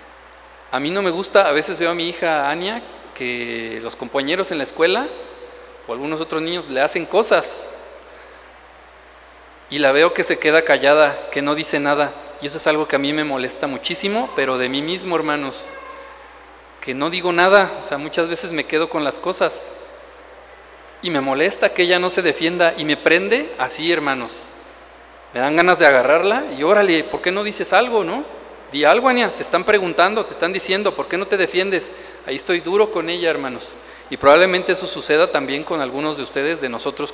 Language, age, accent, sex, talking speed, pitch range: Spanish, 40-59, Mexican, male, 195 wpm, 150-200 Hz